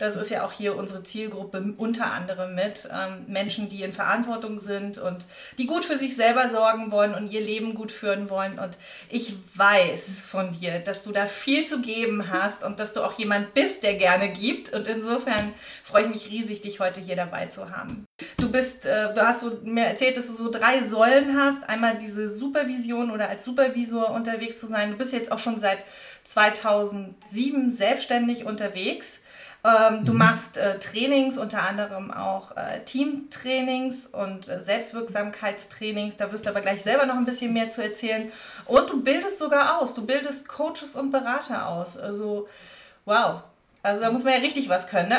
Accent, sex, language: German, female, German